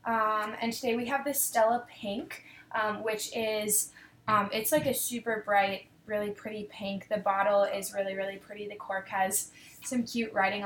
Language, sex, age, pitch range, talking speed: English, female, 20-39, 200-235 Hz, 180 wpm